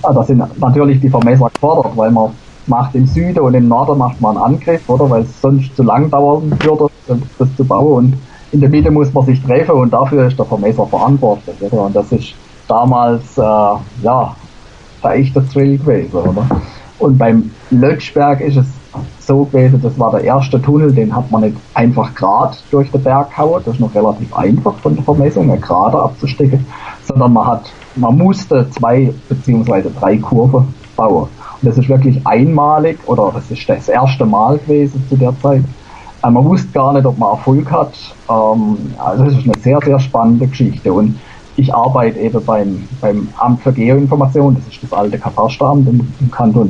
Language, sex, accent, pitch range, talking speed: German, male, German, 115-140 Hz, 190 wpm